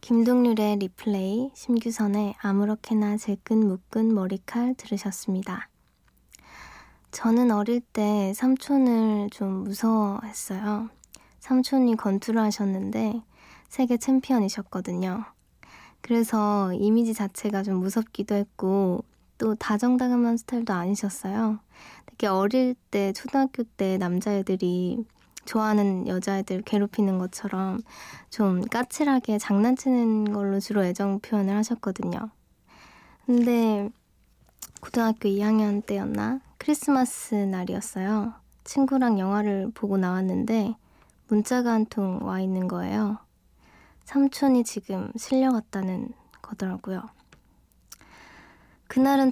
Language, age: Korean, 20-39